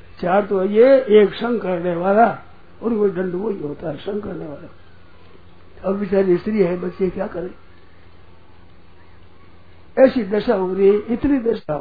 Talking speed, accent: 150 wpm, native